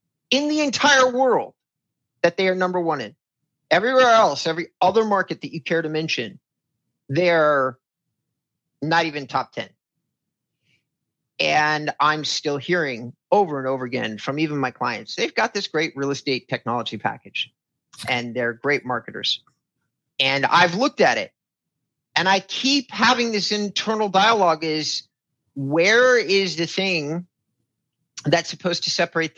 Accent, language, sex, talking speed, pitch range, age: American, English, male, 145 wpm, 130-170 Hz, 40-59